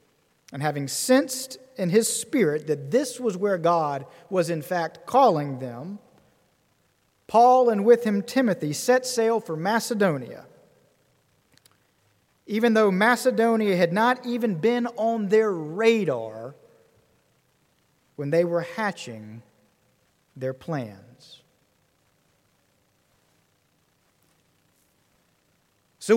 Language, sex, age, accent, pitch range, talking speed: English, male, 40-59, American, 155-225 Hz, 95 wpm